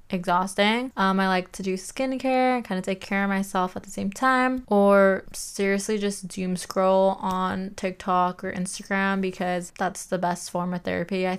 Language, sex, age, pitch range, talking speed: English, female, 20-39, 185-205 Hz, 180 wpm